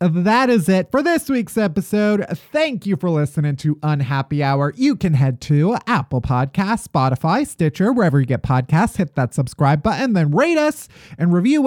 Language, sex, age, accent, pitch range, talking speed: English, male, 30-49, American, 145-220 Hz, 180 wpm